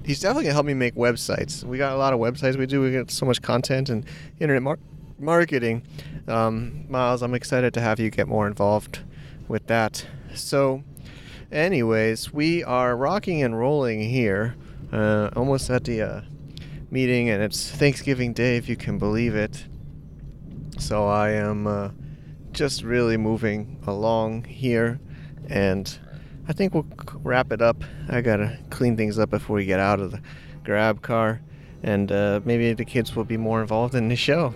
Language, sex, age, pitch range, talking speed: English, male, 30-49, 110-140 Hz, 170 wpm